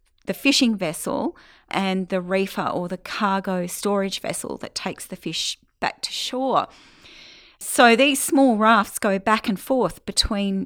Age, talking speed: 30-49, 150 wpm